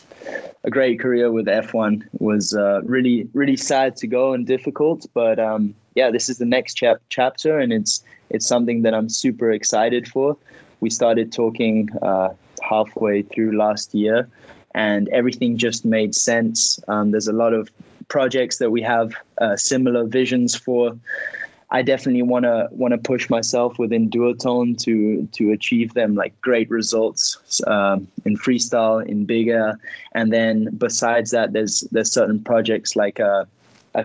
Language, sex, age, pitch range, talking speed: English, male, 20-39, 110-120 Hz, 160 wpm